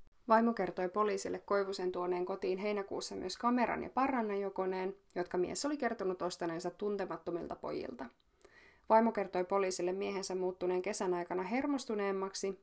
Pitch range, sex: 185-230 Hz, female